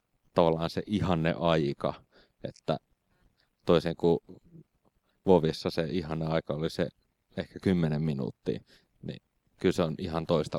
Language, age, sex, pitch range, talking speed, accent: Finnish, 30-49, male, 85-100 Hz, 125 wpm, native